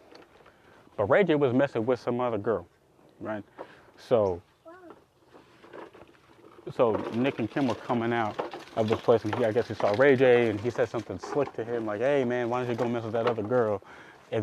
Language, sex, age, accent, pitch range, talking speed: English, male, 20-39, American, 115-145 Hz, 205 wpm